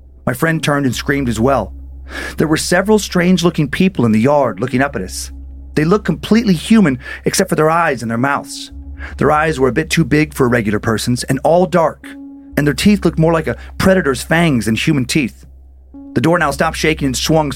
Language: English